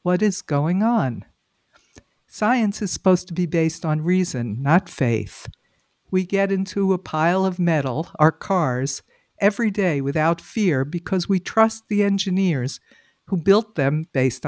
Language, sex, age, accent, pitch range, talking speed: English, female, 60-79, American, 145-190 Hz, 150 wpm